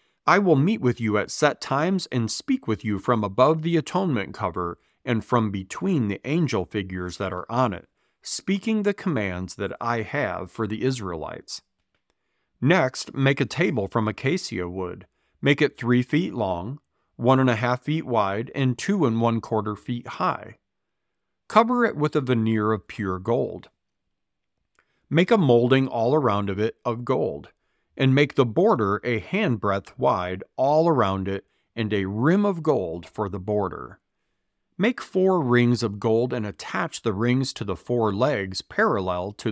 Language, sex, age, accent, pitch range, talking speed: English, male, 40-59, American, 105-140 Hz, 170 wpm